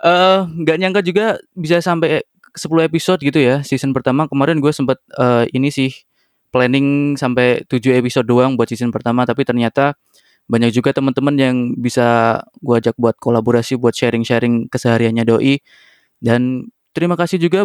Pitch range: 120-150 Hz